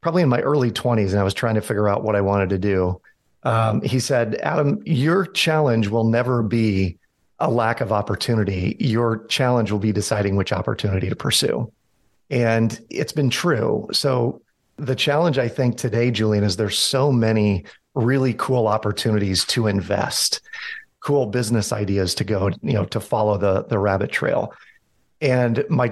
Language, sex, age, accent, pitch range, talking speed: English, male, 40-59, American, 105-130 Hz, 170 wpm